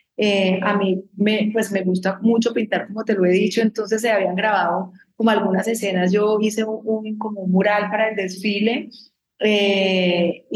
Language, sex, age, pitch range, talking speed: English, female, 30-49, 190-220 Hz, 180 wpm